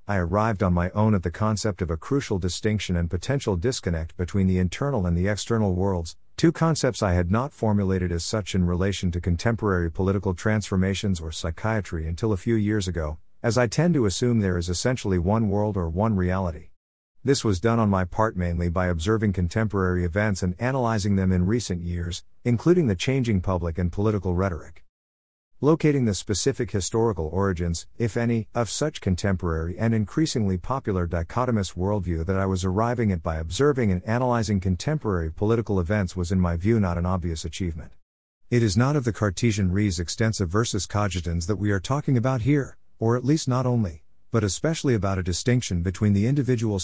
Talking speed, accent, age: 185 wpm, American, 50-69